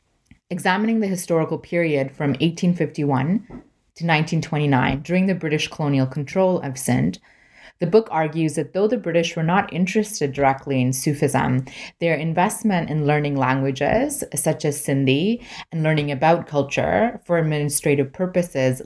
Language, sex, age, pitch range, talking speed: English, female, 20-39, 140-180 Hz, 135 wpm